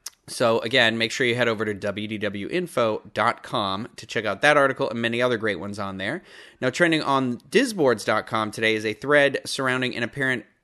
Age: 30-49